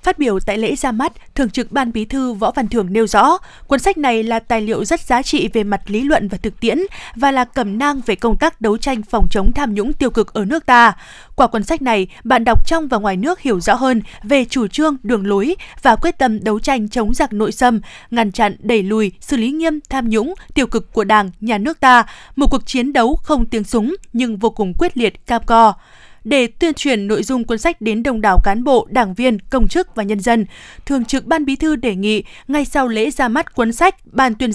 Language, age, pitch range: Vietnamese, 20-39, 220-275 Hz